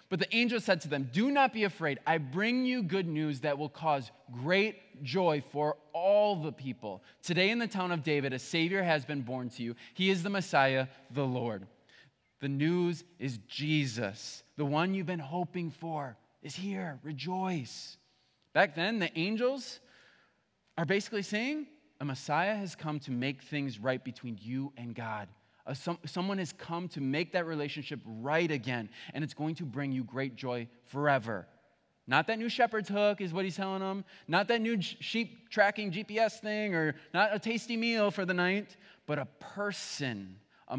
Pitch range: 135-195 Hz